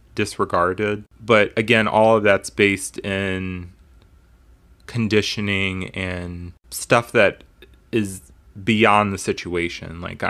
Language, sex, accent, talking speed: English, male, American, 100 wpm